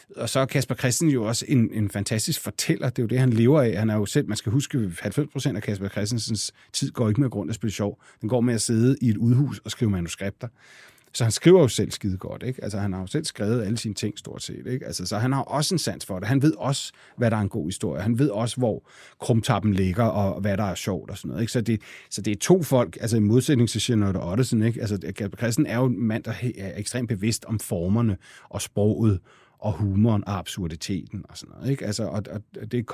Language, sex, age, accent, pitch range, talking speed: Danish, male, 30-49, native, 100-125 Hz, 255 wpm